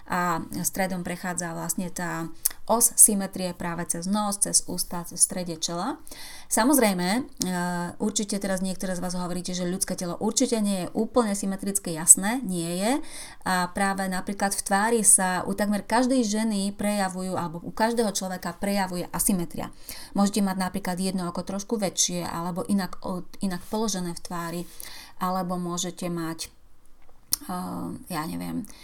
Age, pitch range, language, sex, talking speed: 30-49, 180-215 Hz, Slovak, female, 145 wpm